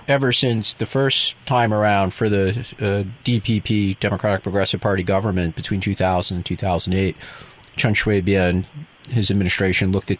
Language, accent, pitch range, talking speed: English, American, 95-115 Hz, 140 wpm